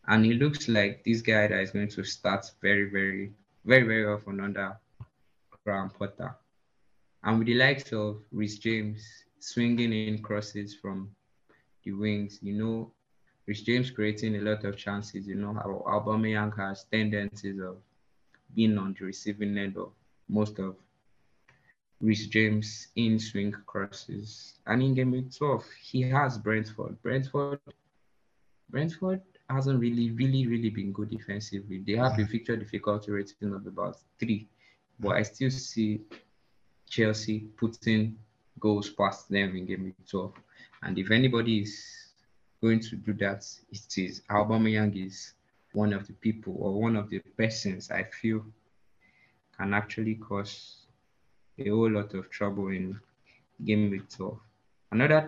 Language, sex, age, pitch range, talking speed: English, male, 20-39, 100-115 Hz, 145 wpm